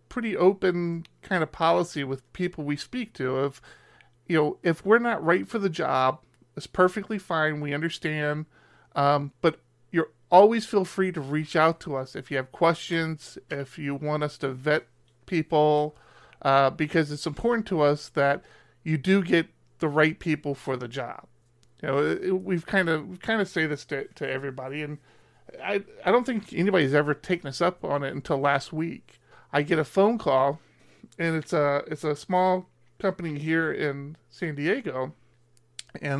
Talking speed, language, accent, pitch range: 180 wpm, English, American, 140-175 Hz